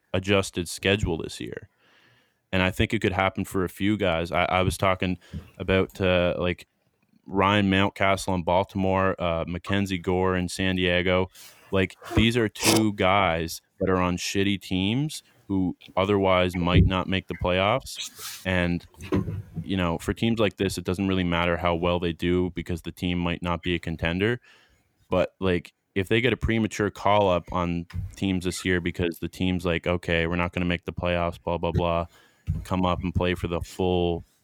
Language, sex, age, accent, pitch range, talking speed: English, male, 20-39, American, 85-95 Hz, 185 wpm